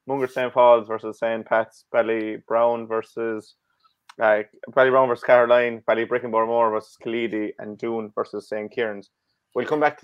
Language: English